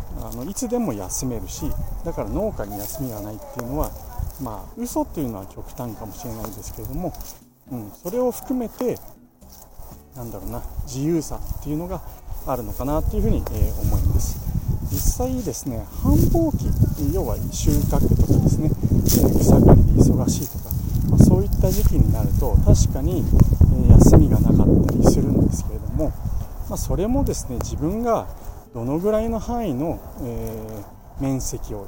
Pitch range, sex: 100-150 Hz, male